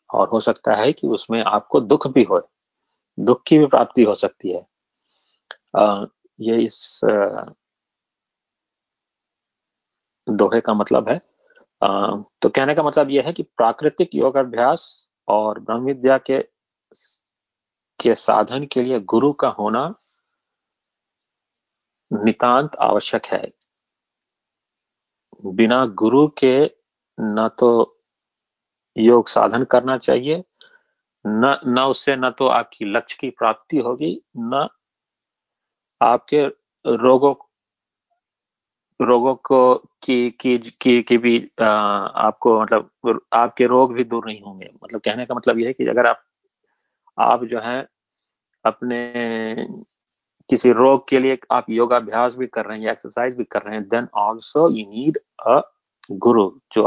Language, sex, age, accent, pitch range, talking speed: Hindi, male, 40-59, native, 115-140 Hz, 125 wpm